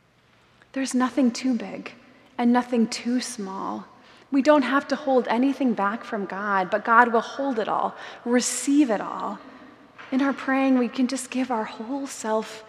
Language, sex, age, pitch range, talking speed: English, female, 20-39, 210-255 Hz, 170 wpm